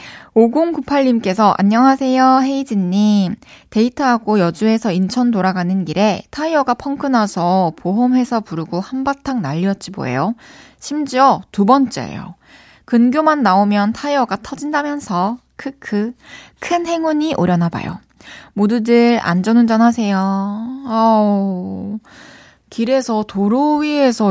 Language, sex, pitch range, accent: Korean, female, 190-255 Hz, native